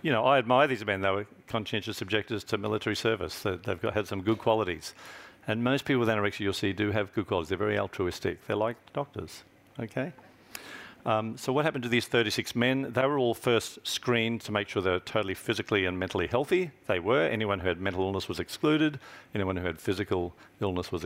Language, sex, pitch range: English, male, 95-120 Hz